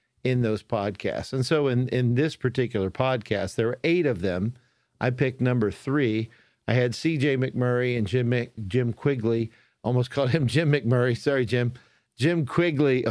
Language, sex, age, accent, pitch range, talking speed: English, male, 50-69, American, 110-130 Hz, 170 wpm